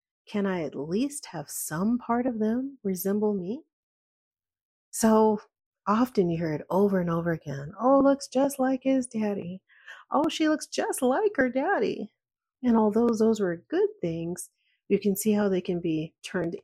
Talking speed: 170 wpm